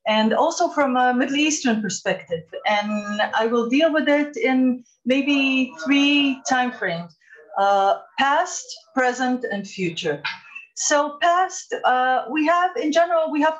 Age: 40-59